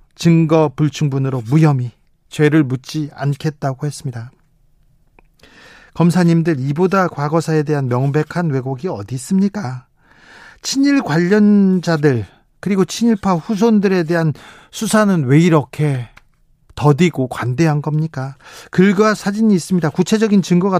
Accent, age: native, 40-59